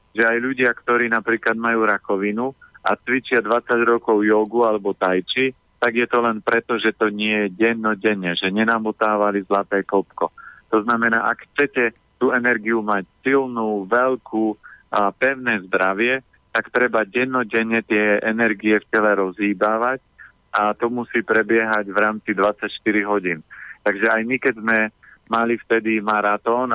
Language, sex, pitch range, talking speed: Slovak, male, 105-120 Hz, 145 wpm